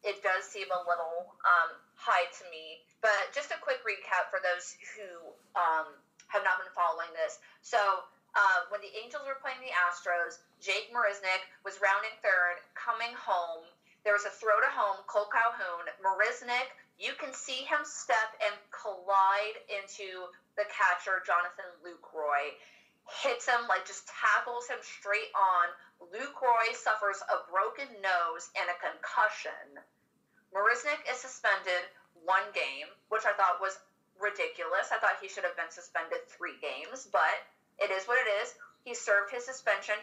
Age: 30-49